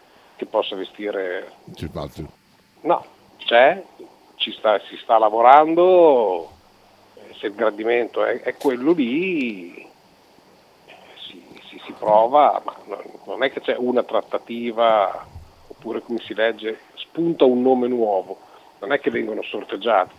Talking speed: 120 wpm